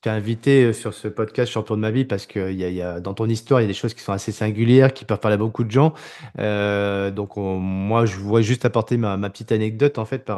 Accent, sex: French, male